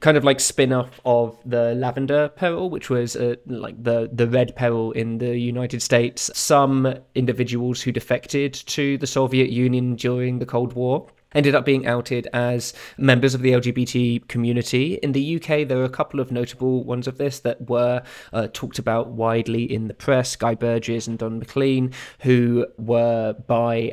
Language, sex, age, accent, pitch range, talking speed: English, male, 20-39, British, 115-130 Hz, 180 wpm